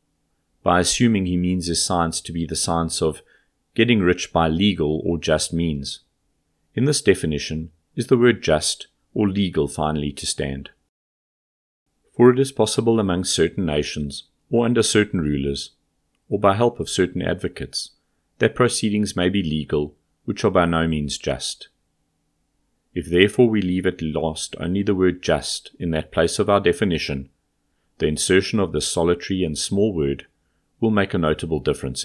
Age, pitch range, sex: 40-59, 75-100 Hz, male